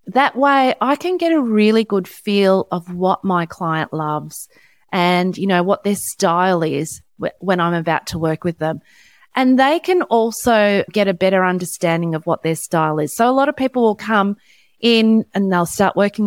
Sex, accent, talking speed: female, Australian, 195 wpm